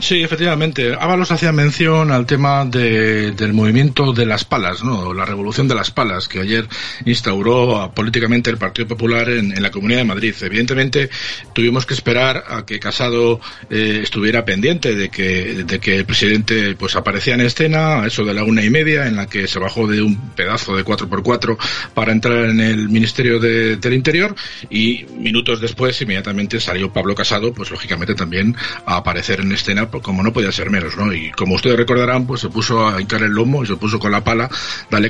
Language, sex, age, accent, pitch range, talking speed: Spanish, male, 40-59, Spanish, 100-120 Hz, 200 wpm